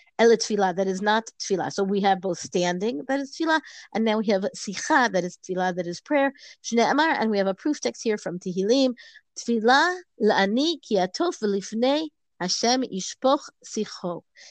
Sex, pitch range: female, 190-255 Hz